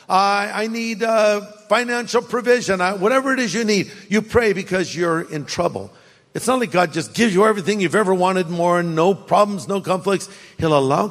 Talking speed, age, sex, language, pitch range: 215 wpm, 50-69, male, English, 150-210 Hz